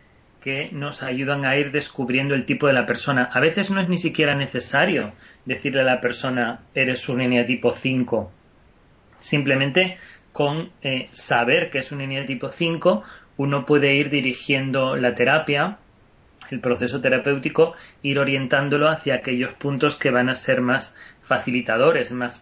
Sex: male